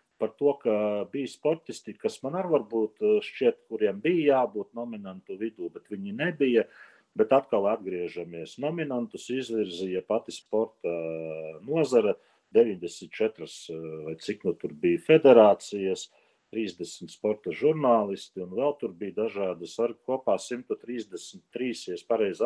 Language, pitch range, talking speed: English, 105-160 Hz, 125 wpm